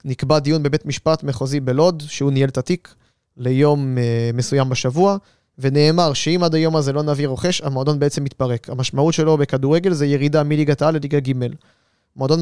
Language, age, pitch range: Hebrew, 20-39, 135-155 Hz